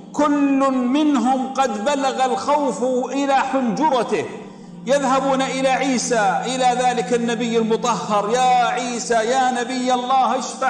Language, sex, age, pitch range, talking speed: Arabic, male, 50-69, 205-265 Hz, 110 wpm